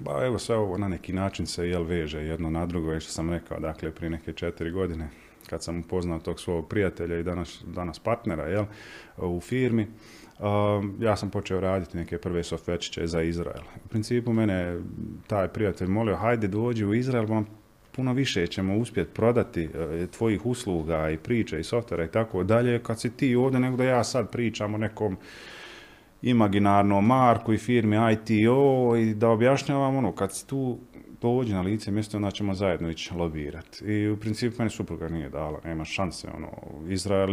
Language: Croatian